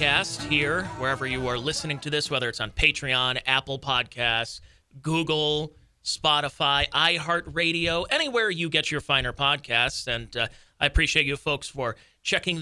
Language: English